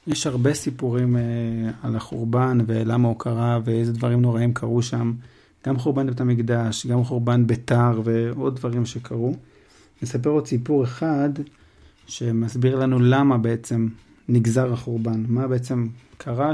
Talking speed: 115 wpm